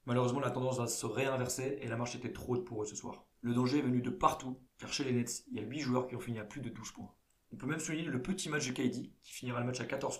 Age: 20-39